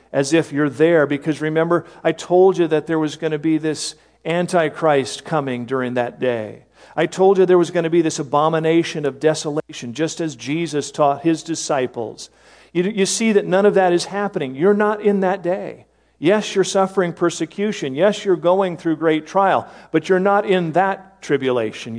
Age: 50-69